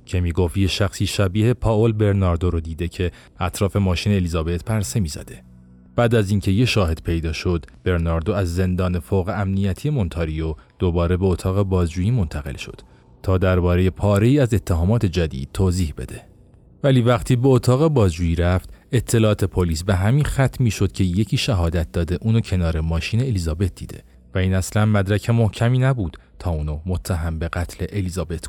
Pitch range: 85-105 Hz